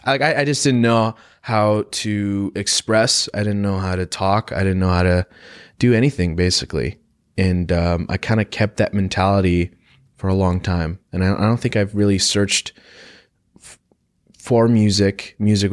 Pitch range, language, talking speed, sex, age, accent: 90-105 Hz, English, 180 wpm, male, 20-39, American